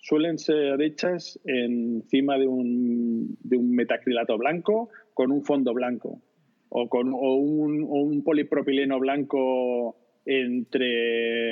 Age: 30-49